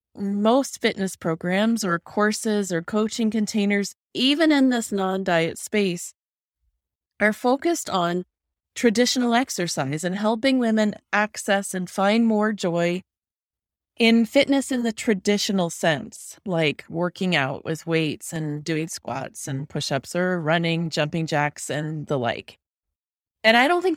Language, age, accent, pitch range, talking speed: English, 30-49, American, 165-230 Hz, 135 wpm